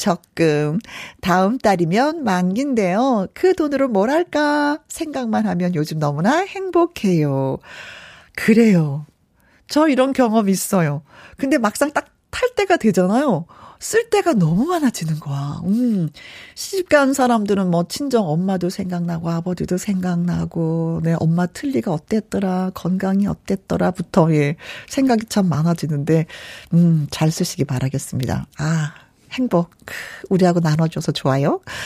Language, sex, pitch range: Korean, female, 165-250 Hz